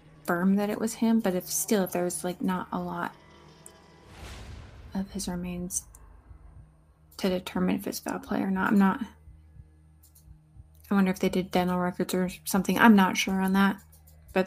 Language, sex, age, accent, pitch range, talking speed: English, female, 20-39, American, 175-210 Hz, 165 wpm